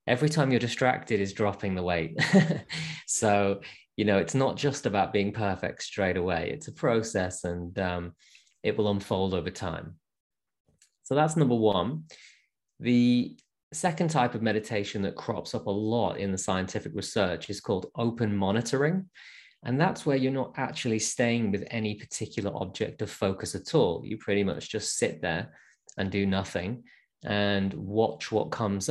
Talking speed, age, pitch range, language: 165 wpm, 20-39, 95-125 Hz, English